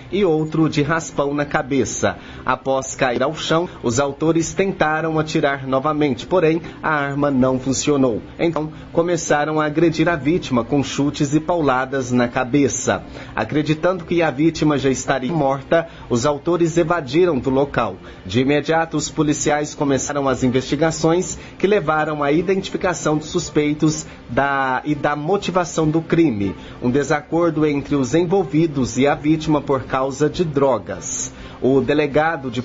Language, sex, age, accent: Portuguese, male, 30-49, Brazilian